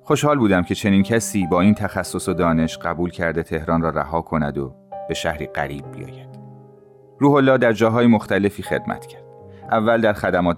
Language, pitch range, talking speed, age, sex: Persian, 80-110 Hz, 175 wpm, 30-49, male